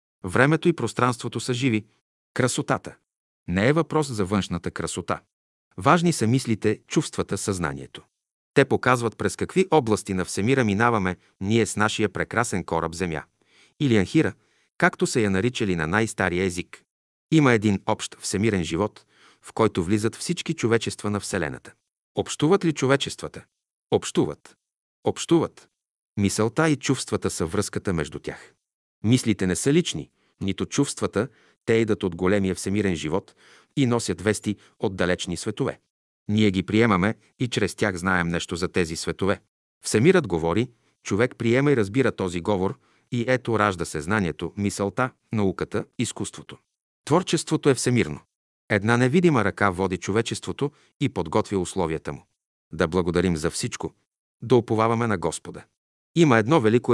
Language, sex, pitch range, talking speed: Bulgarian, male, 95-125 Hz, 140 wpm